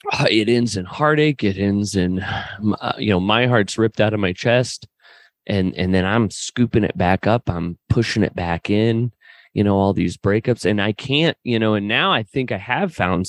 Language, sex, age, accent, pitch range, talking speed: English, male, 30-49, American, 105-150 Hz, 215 wpm